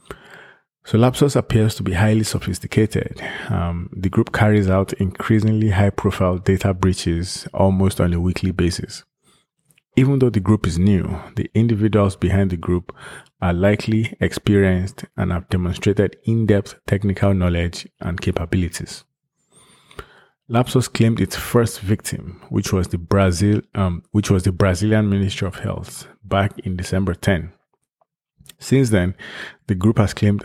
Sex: male